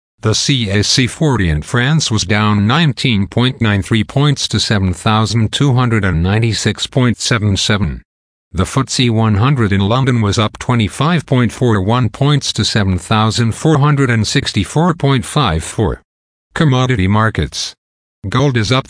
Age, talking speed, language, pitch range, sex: 50-69, 85 wpm, English, 95-120 Hz, male